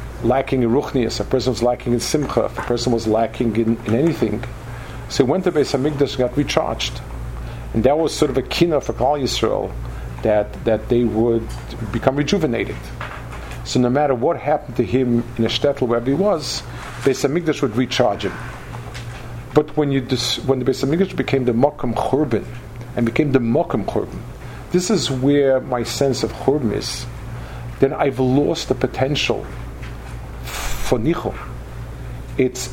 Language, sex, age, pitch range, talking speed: English, male, 50-69, 115-135 Hz, 165 wpm